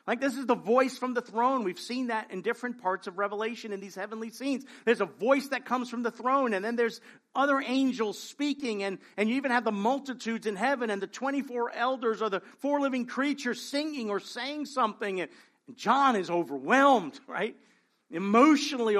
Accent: American